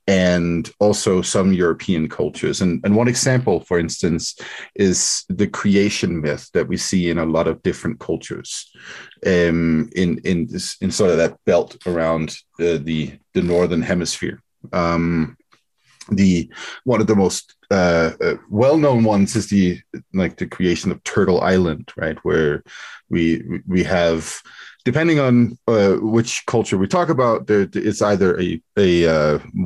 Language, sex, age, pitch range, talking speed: English, male, 40-59, 80-105 Hz, 155 wpm